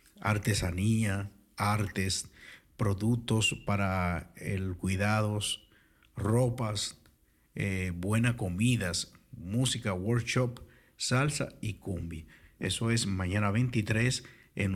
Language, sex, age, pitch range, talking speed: Dutch, male, 50-69, 95-115 Hz, 80 wpm